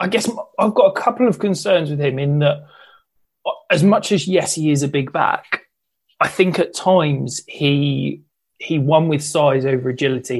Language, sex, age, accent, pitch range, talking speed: English, male, 20-39, British, 130-150 Hz, 185 wpm